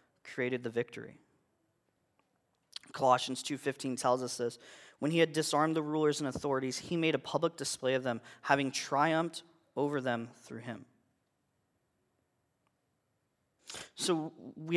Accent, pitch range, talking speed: American, 125-155 Hz, 125 wpm